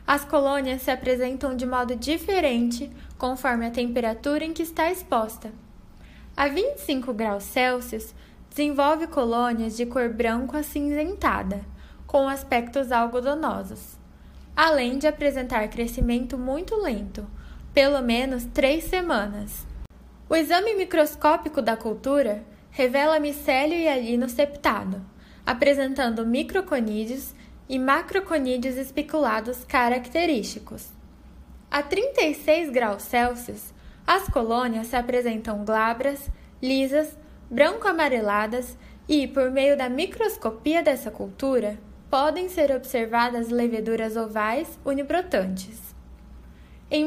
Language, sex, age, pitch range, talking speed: Portuguese, female, 10-29, 235-300 Hz, 100 wpm